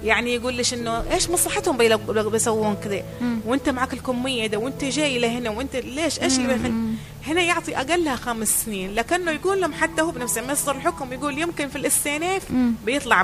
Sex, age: female, 30-49